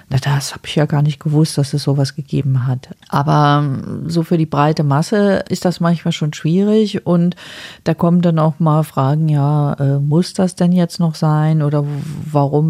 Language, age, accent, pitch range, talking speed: German, 40-59, German, 155-185 Hz, 190 wpm